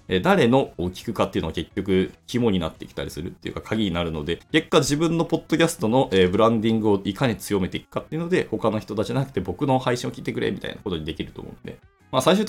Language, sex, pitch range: Japanese, male, 95-150 Hz